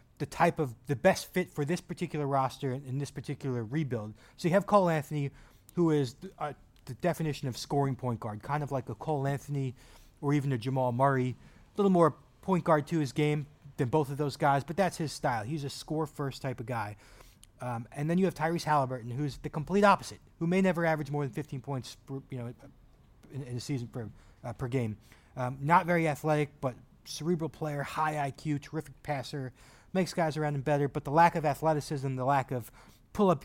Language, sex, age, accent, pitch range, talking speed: English, male, 30-49, American, 130-155 Hz, 215 wpm